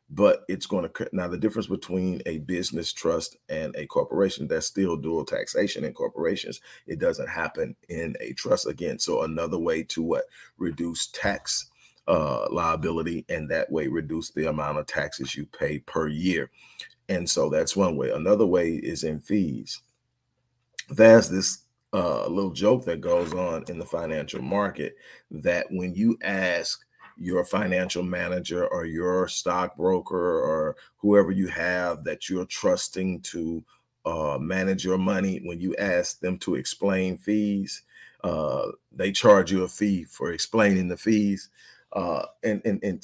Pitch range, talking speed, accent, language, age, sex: 90-110 Hz, 160 wpm, American, English, 40-59, male